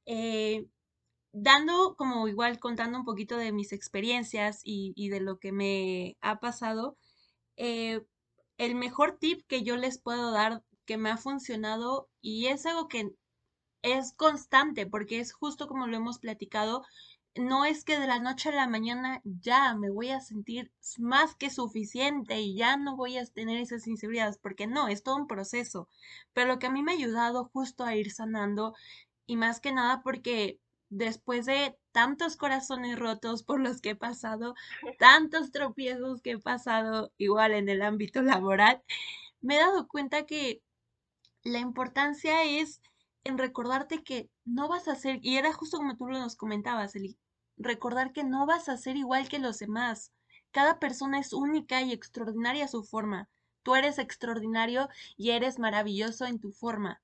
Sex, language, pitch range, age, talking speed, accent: female, Spanish, 220-270 Hz, 20-39, 175 wpm, Mexican